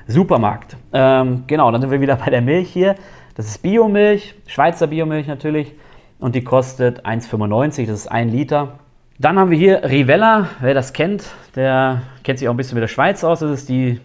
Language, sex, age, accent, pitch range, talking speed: German, male, 30-49, German, 120-160 Hz, 195 wpm